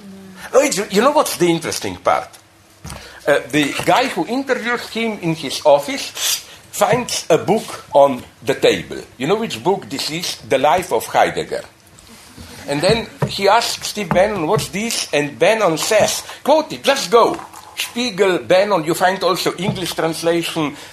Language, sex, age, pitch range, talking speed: English, male, 60-79, 155-210 Hz, 150 wpm